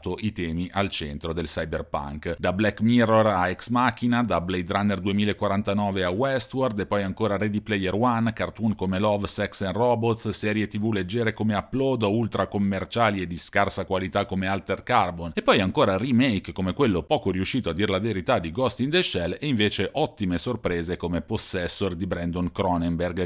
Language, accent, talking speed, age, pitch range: Italian, native, 180 wpm, 40-59, 85-110 Hz